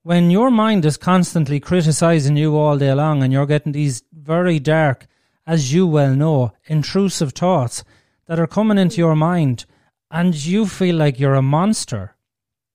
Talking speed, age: 165 wpm, 30-49